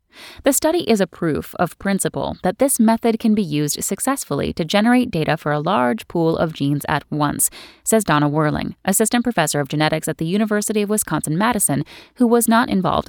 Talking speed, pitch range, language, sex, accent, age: 190 wpm, 155-225 Hz, English, female, American, 10-29